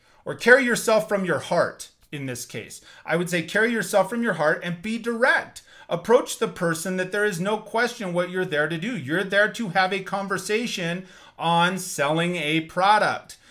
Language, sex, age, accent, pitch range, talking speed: English, male, 30-49, American, 170-240 Hz, 190 wpm